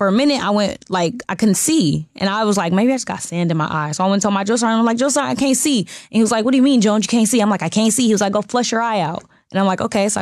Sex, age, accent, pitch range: female, 10-29, American, 165-195 Hz